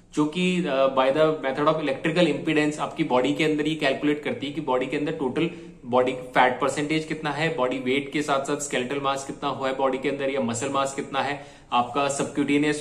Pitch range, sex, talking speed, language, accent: 135-160 Hz, male, 215 wpm, Hindi, native